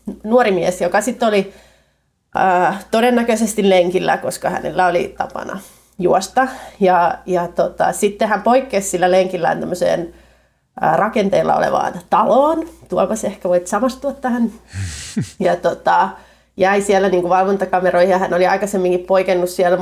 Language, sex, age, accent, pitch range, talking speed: Finnish, female, 30-49, native, 180-215 Hz, 130 wpm